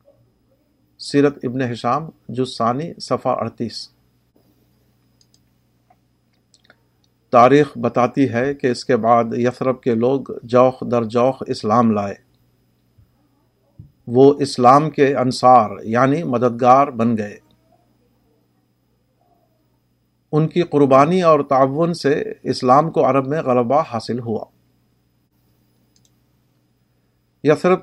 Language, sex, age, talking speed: Urdu, male, 50-69, 95 wpm